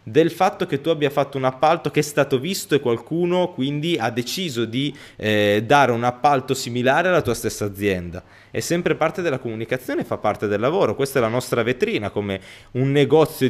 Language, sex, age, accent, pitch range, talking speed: Italian, male, 20-39, native, 115-160 Hz, 195 wpm